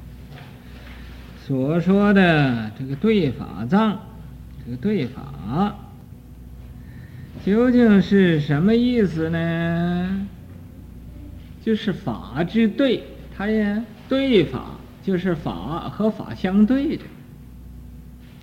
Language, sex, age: Chinese, male, 50-69